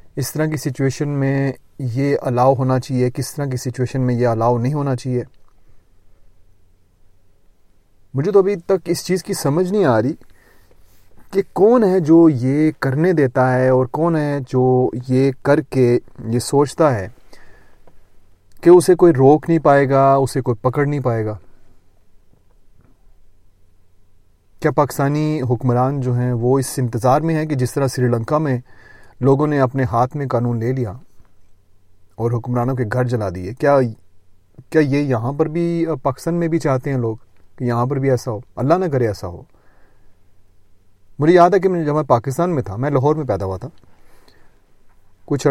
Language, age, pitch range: Urdu, 30-49, 100-140 Hz